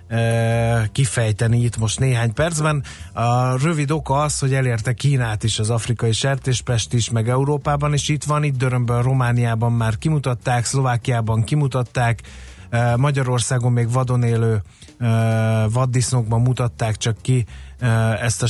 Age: 30-49